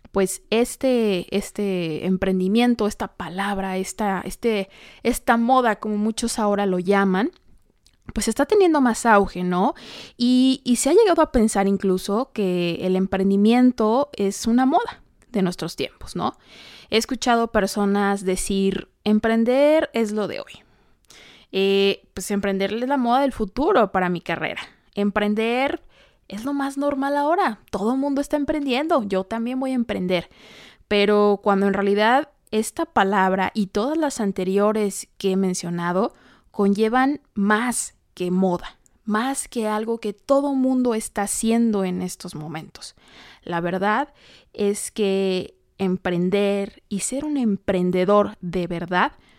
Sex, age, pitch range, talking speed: female, 20-39, 195-250 Hz, 135 wpm